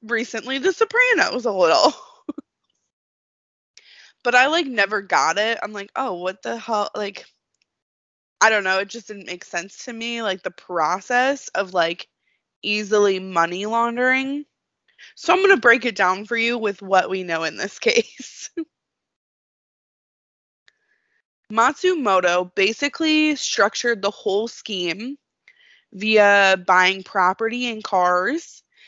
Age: 20-39